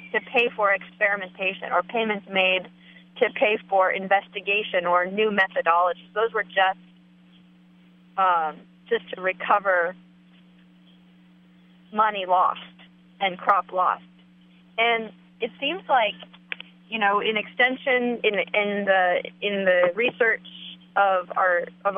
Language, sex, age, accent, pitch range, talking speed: English, female, 30-49, American, 180-220 Hz, 115 wpm